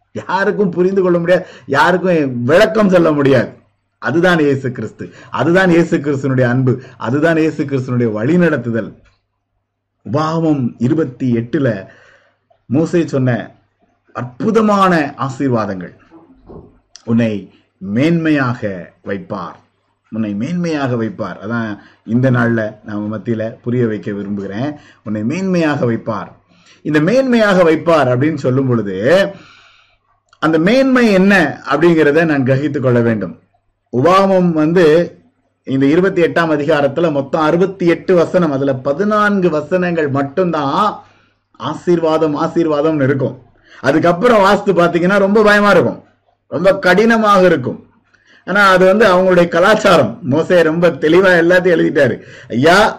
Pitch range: 120-180 Hz